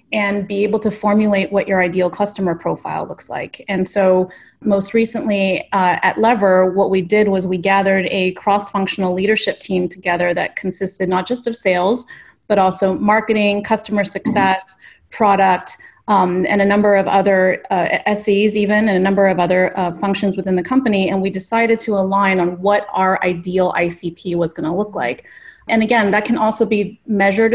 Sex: female